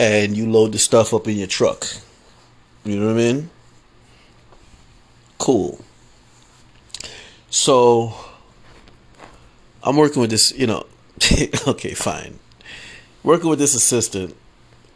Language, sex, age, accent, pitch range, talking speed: English, male, 30-49, American, 100-125 Hz, 110 wpm